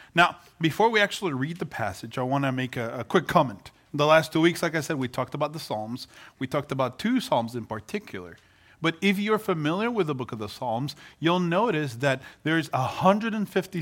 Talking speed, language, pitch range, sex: 215 wpm, English, 115-165 Hz, male